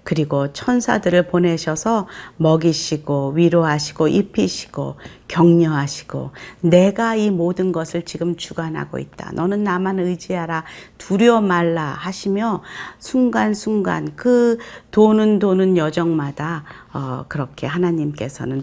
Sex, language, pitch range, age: female, Korean, 155-200 Hz, 40-59